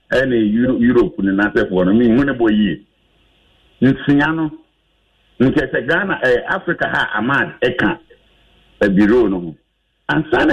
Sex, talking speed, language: male, 70 wpm, English